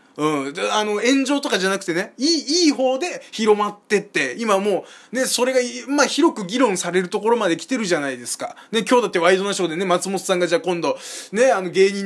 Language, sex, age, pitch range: Japanese, male, 20-39, 185-275 Hz